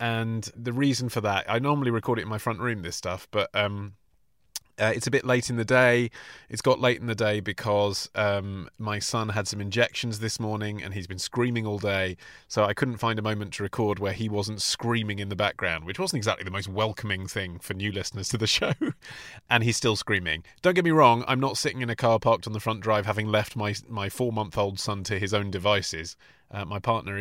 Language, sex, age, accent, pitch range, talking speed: English, male, 30-49, British, 100-125 Hz, 235 wpm